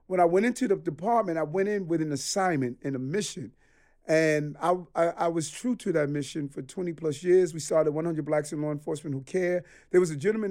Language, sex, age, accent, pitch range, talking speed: English, male, 40-59, American, 140-175 Hz, 235 wpm